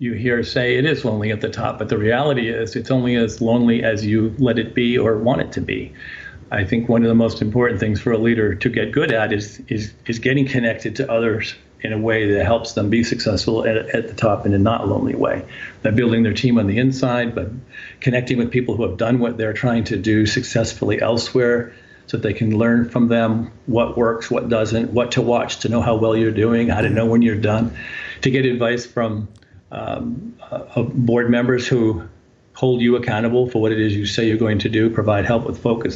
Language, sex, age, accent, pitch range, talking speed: English, male, 50-69, American, 110-125 Hz, 235 wpm